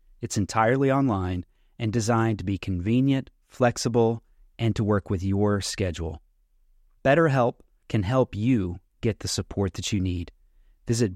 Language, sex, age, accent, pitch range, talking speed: English, male, 30-49, American, 100-130 Hz, 140 wpm